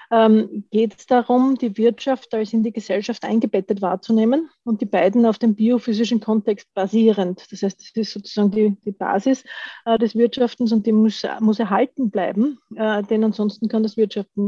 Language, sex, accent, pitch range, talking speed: German, female, Austrian, 210-235 Hz, 165 wpm